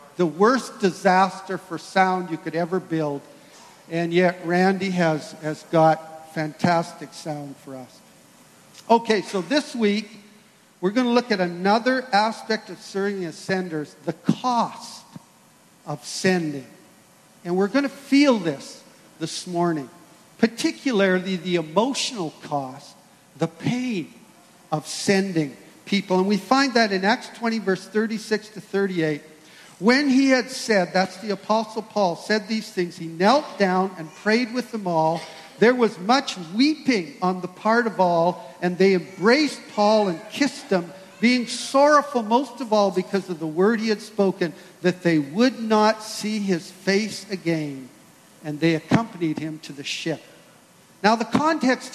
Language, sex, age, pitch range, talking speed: English, male, 50-69, 170-225 Hz, 150 wpm